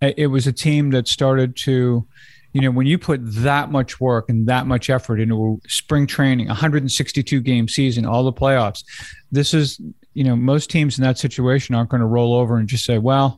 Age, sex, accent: 40-59, male, American